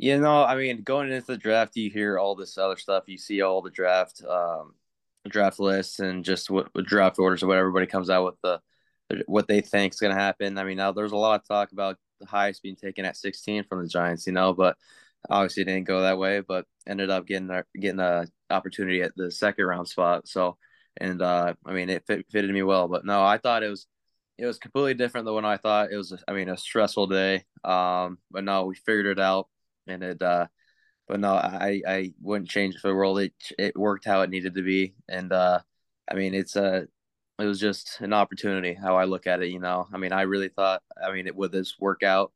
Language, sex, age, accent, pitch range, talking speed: English, male, 20-39, American, 90-100 Hz, 240 wpm